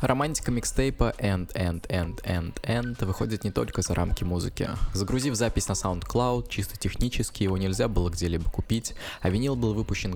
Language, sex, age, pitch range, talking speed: Russian, male, 20-39, 90-115 Hz, 165 wpm